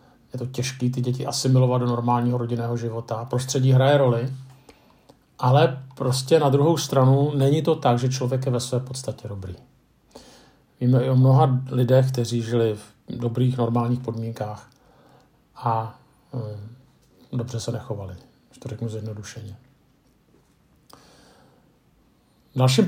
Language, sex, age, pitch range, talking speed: Czech, male, 50-69, 120-140 Hz, 125 wpm